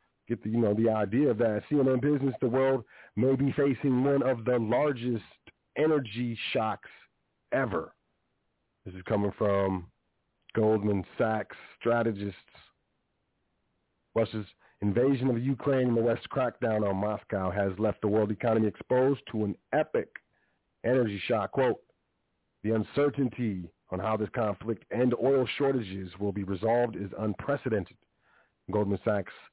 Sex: male